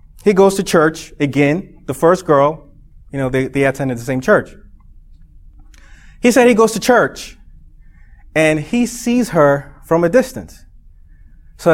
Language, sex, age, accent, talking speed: English, male, 30-49, American, 155 wpm